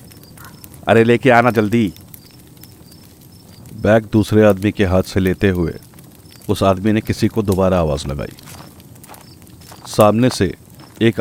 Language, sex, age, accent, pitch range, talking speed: Hindi, male, 50-69, native, 95-110 Hz, 125 wpm